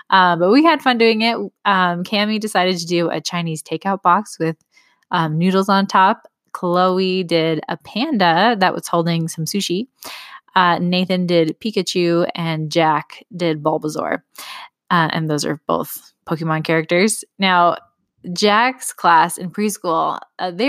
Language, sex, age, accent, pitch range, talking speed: English, female, 20-39, American, 170-215 Hz, 150 wpm